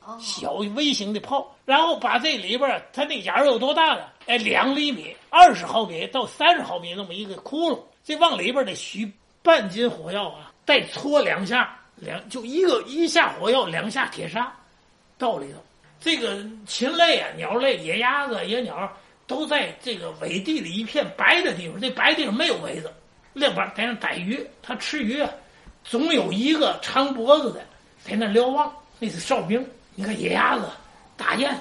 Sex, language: male, Chinese